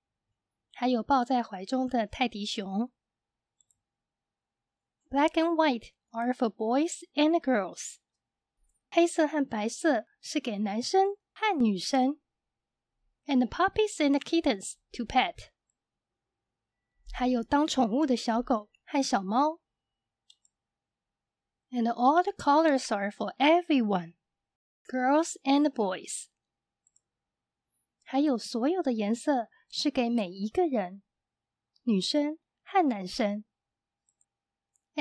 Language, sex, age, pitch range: Chinese, female, 20-39, 215-295 Hz